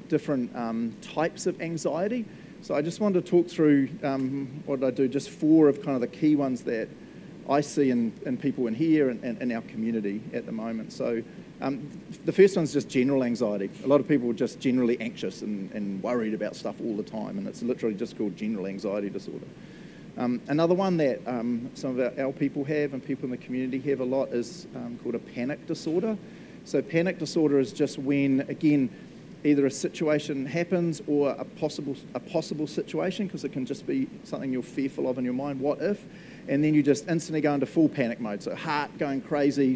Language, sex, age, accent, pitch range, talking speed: English, male, 40-59, Australian, 135-170 Hz, 215 wpm